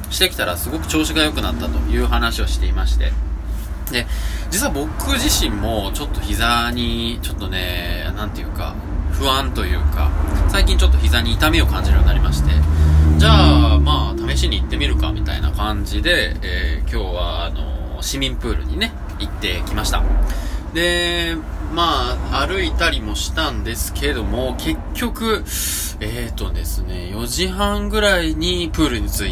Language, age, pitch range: Japanese, 20-39, 75-100 Hz